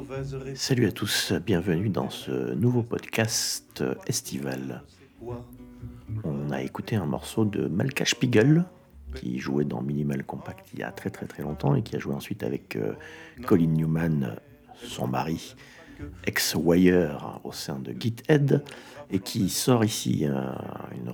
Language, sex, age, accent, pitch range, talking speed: French, male, 50-69, French, 75-125 Hz, 140 wpm